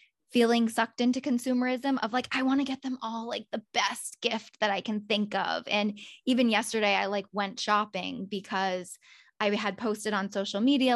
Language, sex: English, female